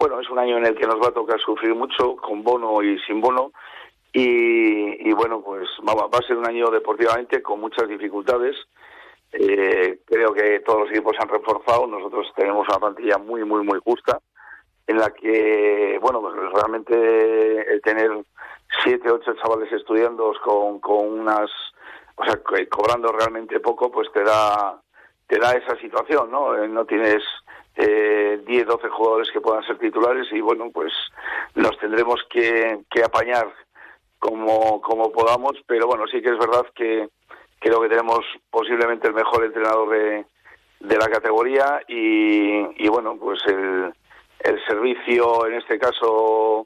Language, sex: Spanish, male